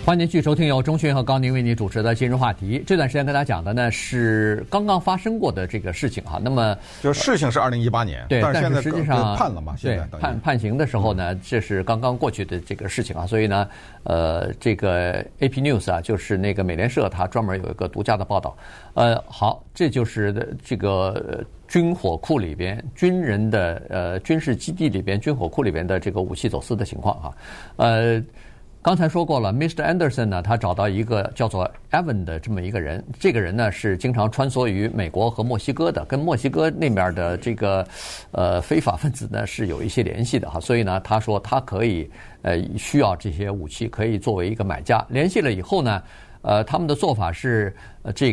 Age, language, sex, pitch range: 50-69, Chinese, male, 100-130 Hz